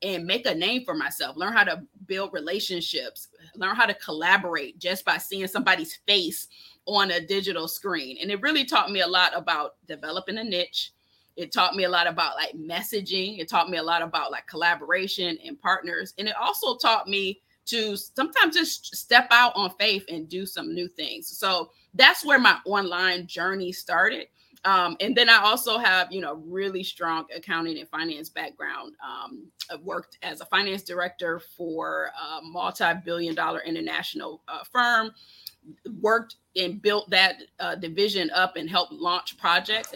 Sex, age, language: female, 20-39, English